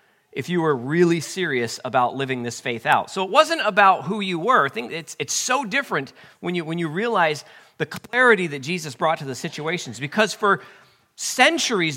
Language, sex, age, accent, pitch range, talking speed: English, male, 40-59, American, 145-220 Hz, 180 wpm